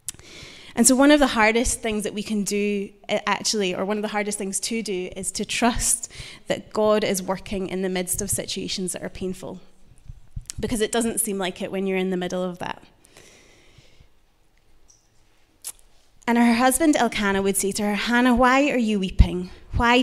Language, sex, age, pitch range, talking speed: English, female, 20-39, 185-225 Hz, 185 wpm